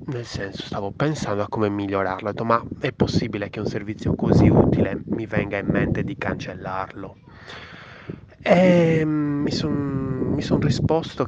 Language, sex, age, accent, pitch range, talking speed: Italian, male, 30-49, native, 100-140 Hz, 150 wpm